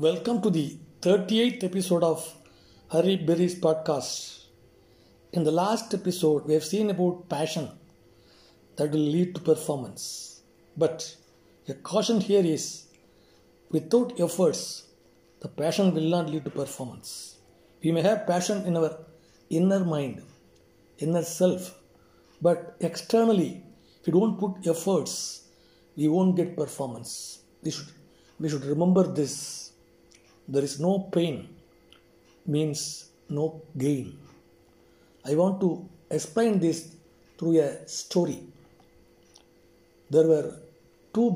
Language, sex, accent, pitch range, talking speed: English, male, Indian, 145-180 Hz, 120 wpm